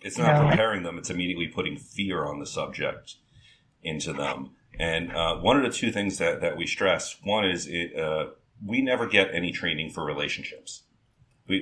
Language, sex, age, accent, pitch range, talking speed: English, male, 40-59, American, 80-105 Hz, 185 wpm